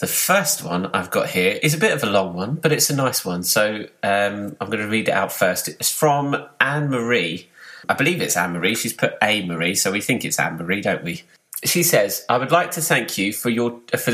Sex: male